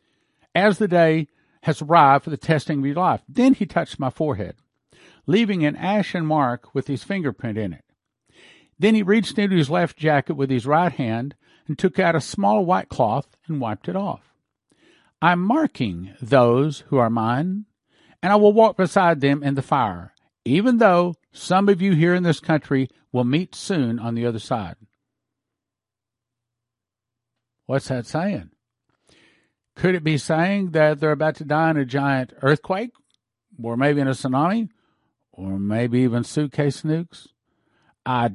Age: 50-69